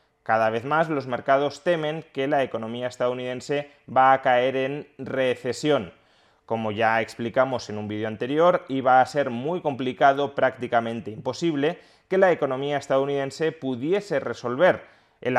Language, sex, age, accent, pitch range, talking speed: Spanish, male, 30-49, Spanish, 120-155 Hz, 140 wpm